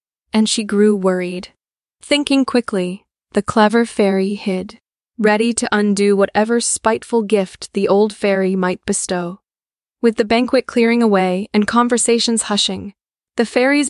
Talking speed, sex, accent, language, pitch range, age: 135 wpm, female, American, English, 195-230 Hz, 20-39